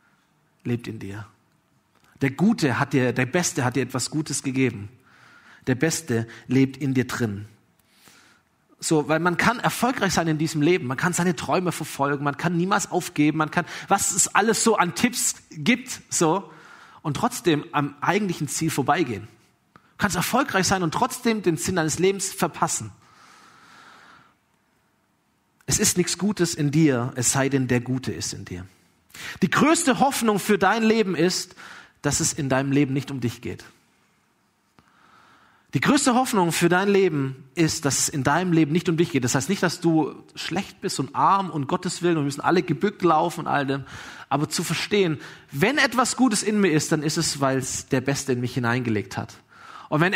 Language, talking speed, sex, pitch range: German, 185 wpm, male, 135-195 Hz